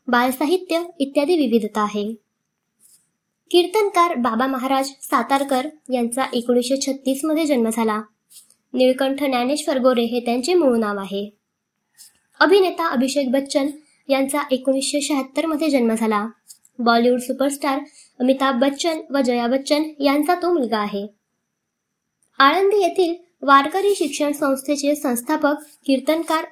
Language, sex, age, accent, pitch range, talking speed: Marathi, male, 20-39, native, 255-305 Hz, 110 wpm